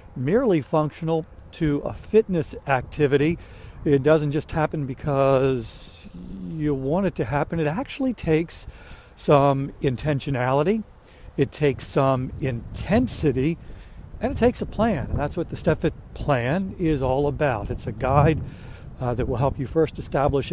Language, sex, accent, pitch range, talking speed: English, male, American, 130-155 Hz, 145 wpm